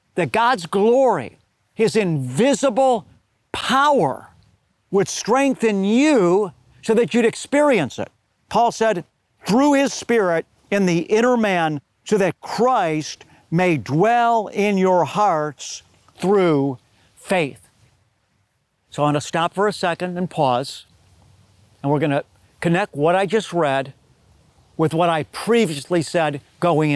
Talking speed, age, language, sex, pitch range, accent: 130 wpm, 50-69, English, male, 150-230 Hz, American